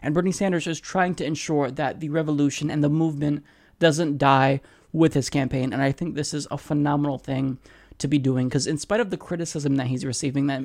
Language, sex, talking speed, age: English, male, 220 wpm, 20-39